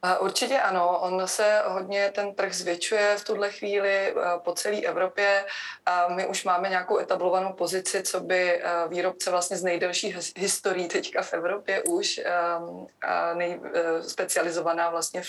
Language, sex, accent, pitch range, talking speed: Czech, female, native, 180-200 Hz, 135 wpm